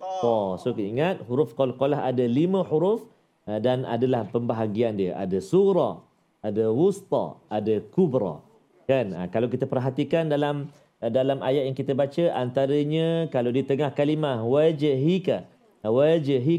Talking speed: 135 wpm